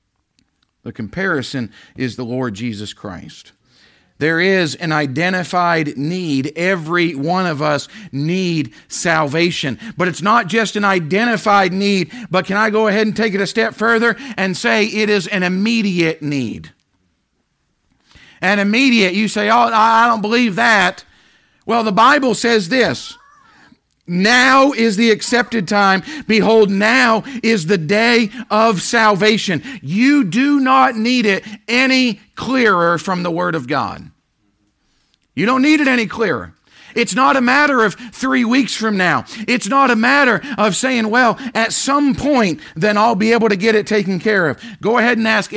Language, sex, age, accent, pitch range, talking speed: English, male, 50-69, American, 180-235 Hz, 160 wpm